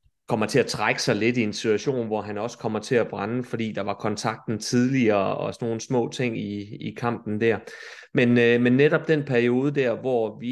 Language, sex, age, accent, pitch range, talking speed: Danish, male, 30-49, native, 115-140 Hz, 220 wpm